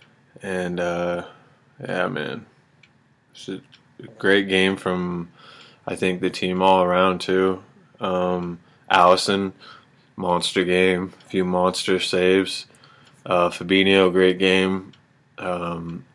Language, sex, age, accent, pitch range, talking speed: English, male, 20-39, American, 90-95 Hz, 105 wpm